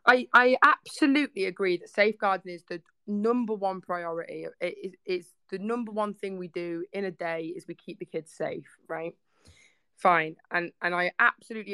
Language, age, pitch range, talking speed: English, 20-39, 170-210 Hz, 180 wpm